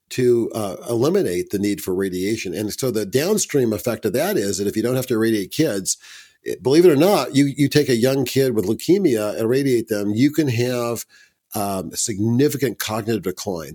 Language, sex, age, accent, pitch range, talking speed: English, male, 50-69, American, 100-125 Hz, 205 wpm